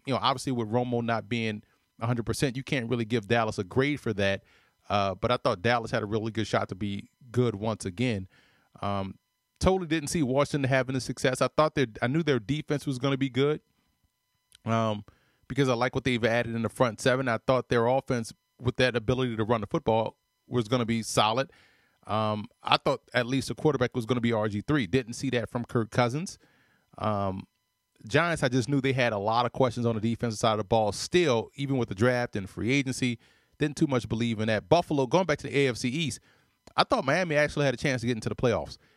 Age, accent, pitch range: 30-49, American, 115-140 Hz